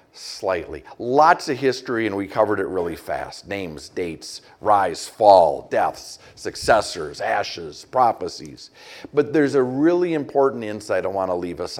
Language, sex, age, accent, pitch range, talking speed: English, male, 50-69, American, 110-145 Hz, 150 wpm